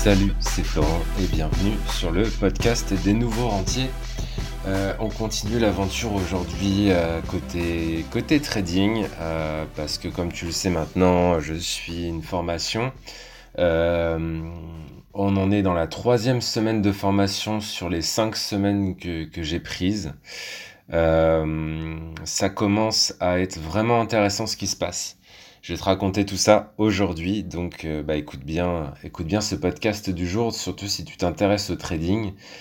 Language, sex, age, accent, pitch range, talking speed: French, male, 20-39, French, 85-105 Hz, 150 wpm